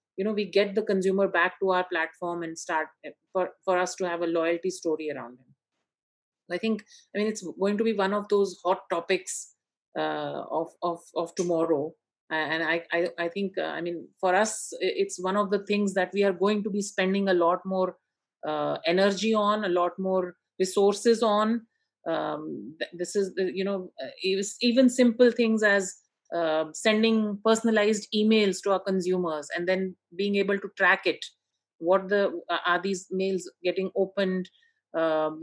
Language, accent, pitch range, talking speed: English, Indian, 180-215 Hz, 175 wpm